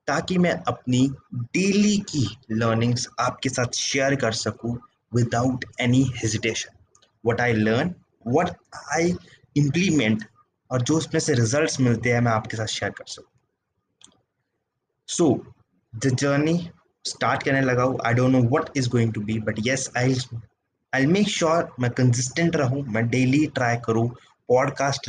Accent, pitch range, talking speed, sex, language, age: native, 120-160 Hz, 145 wpm, male, Hindi, 20-39